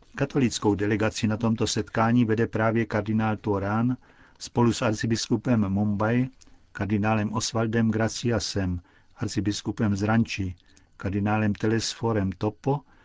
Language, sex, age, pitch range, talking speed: Czech, male, 50-69, 105-120 Hz, 95 wpm